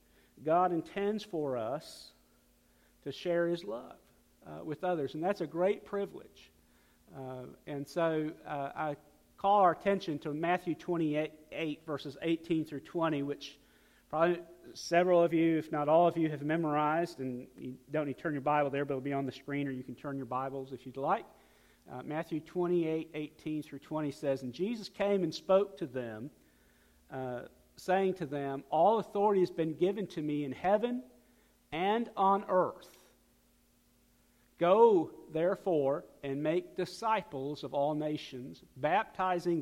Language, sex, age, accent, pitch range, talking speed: English, male, 50-69, American, 135-175 Hz, 160 wpm